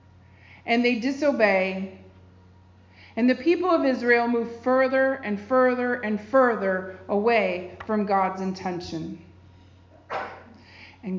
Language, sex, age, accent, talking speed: English, female, 40-59, American, 100 wpm